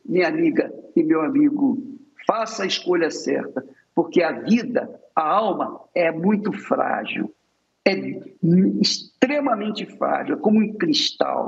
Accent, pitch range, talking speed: Brazilian, 220-300 Hz, 125 wpm